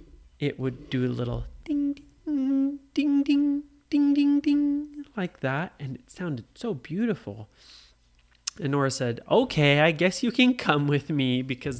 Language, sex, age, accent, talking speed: English, male, 30-49, American, 160 wpm